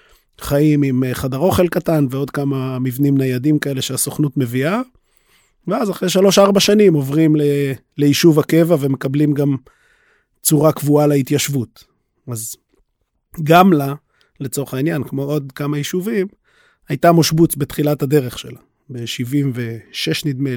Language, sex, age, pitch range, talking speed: Hebrew, male, 30-49, 140-175 Hz, 115 wpm